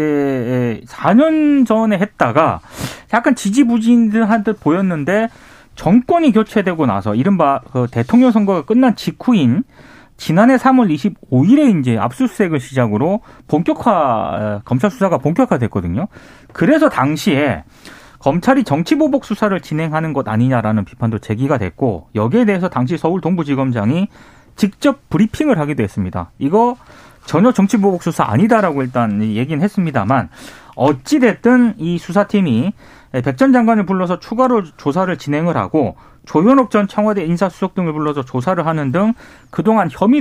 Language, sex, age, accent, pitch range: Korean, male, 30-49, native, 135-225 Hz